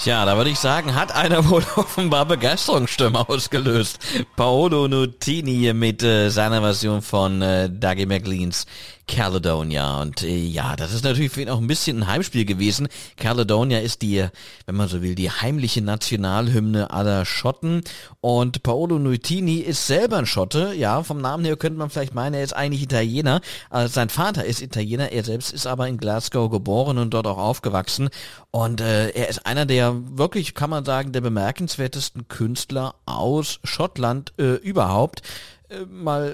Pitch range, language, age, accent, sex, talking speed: 105-140 Hz, English, 40-59, German, male, 165 wpm